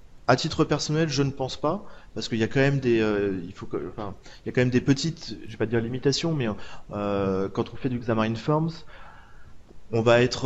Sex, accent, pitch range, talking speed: male, French, 115-140 Hz, 240 wpm